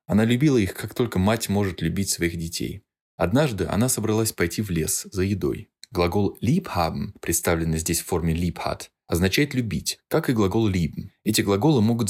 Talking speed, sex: 170 wpm, male